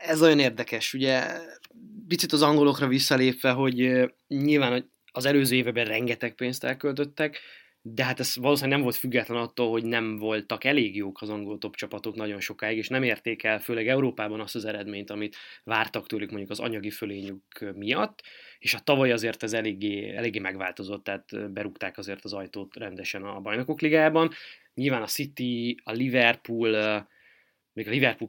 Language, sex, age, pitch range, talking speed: Hungarian, male, 20-39, 105-130 Hz, 160 wpm